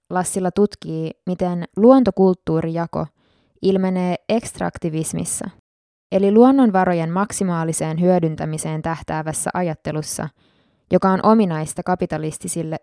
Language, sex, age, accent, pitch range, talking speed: Finnish, female, 20-39, native, 160-195 Hz, 75 wpm